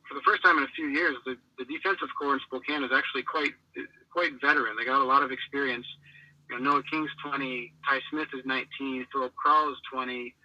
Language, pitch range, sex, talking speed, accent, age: English, 125-145 Hz, male, 220 wpm, American, 40-59